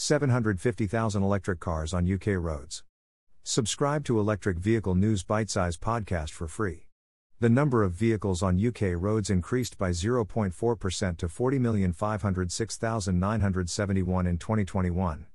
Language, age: English, 50-69